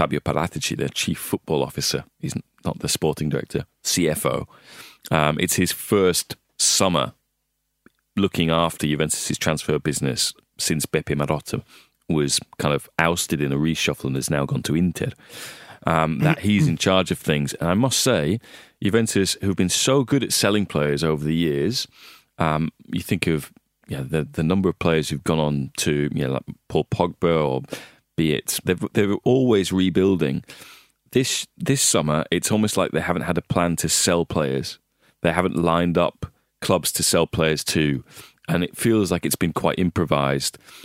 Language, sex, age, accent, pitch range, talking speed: English, male, 30-49, British, 75-95 Hz, 170 wpm